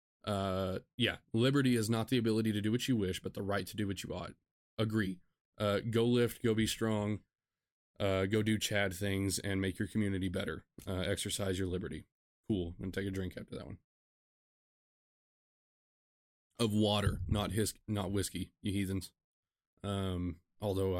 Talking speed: 170 wpm